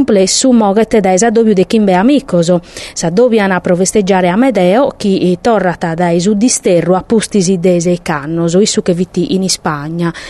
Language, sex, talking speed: Italian, female, 145 wpm